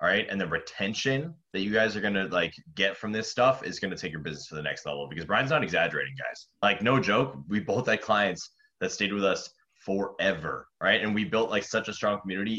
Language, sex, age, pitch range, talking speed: English, male, 20-39, 95-115 Hz, 250 wpm